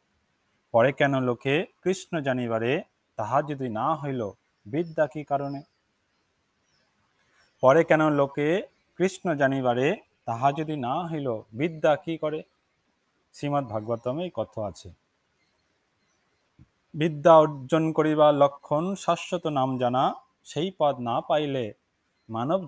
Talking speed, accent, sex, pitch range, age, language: 110 wpm, native, male, 125-165 Hz, 30-49, Bengali